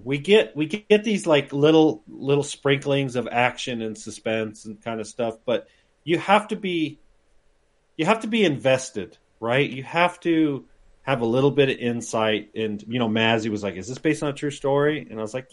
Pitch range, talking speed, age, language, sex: 110-145 Hz, 210 wpm, 40-59, English, male